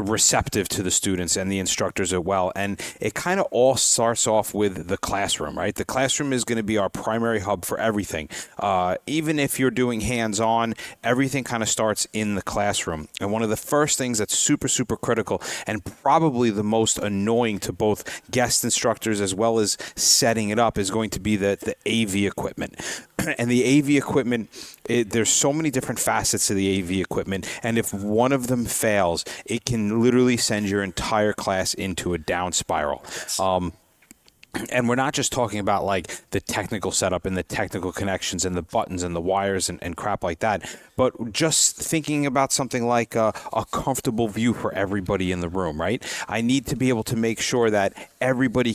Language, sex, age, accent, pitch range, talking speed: English, male, 30-49, American, 100-125 Hz, 195 wpm